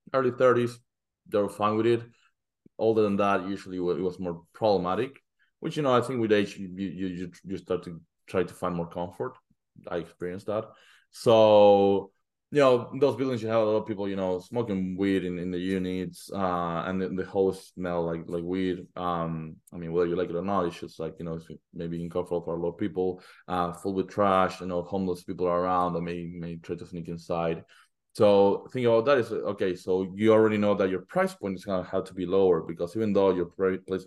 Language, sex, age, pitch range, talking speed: English, male, 20-39, 90-110 Hz, 225 wpm